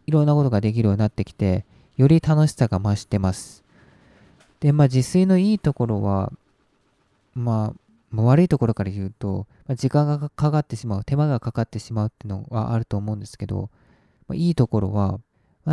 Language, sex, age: Japanese, male, 20-39